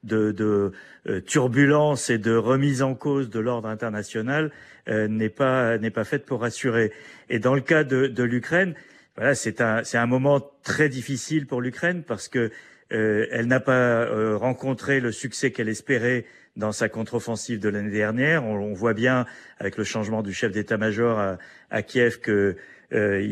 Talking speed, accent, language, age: 180 wpm, French, French, 40-59